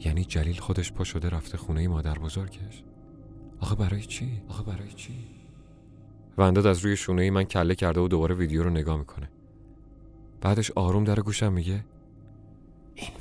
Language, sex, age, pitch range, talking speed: Persian, male, 30-49, 80-105 Hz, 165 wpm